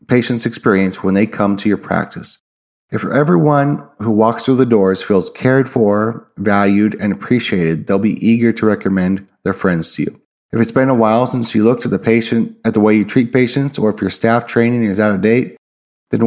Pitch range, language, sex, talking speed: 105-130 Hz, English, male, 210 wpm